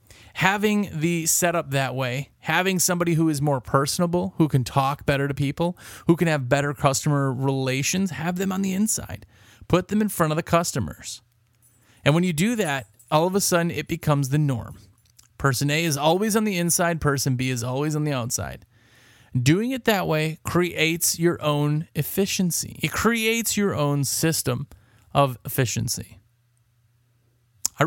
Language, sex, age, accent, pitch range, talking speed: English, male, 30-49, American, 120-165 Hz, 170 wpm